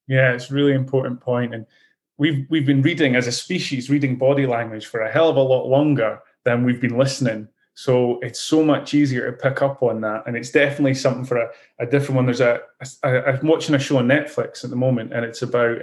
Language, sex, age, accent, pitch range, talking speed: English, male, 20-39, British, 125-145 Hz, 240 wpm